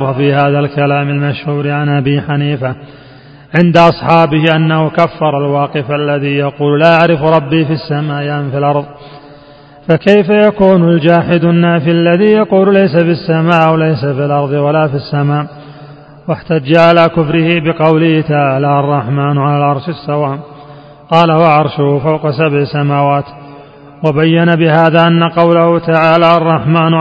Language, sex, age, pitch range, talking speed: Arabic, male, 30-49, 145-165 Hz, 130 wpm